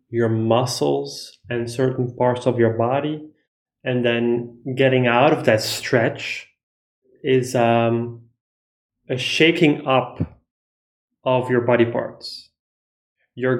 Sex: male